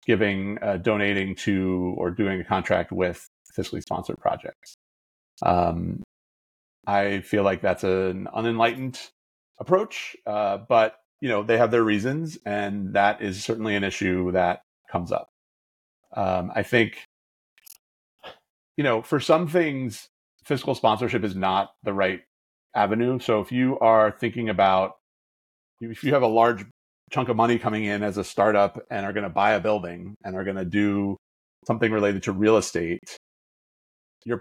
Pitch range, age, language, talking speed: 95-115 Hz, 40-59, English, 155 wpm